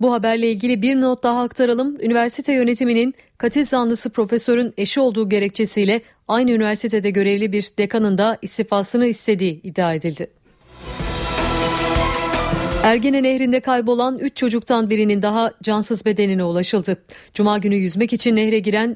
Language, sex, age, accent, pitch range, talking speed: Turkish, female, 40-59, native, 205-245 Hz, 130 wpm